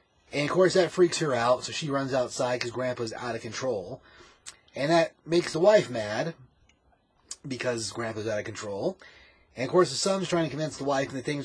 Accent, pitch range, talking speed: American, 115-165 Hz, 205 wpm